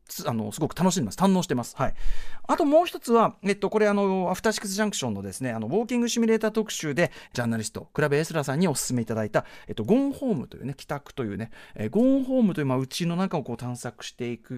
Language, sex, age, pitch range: Japanese, male, 40-59, 125-195 Hz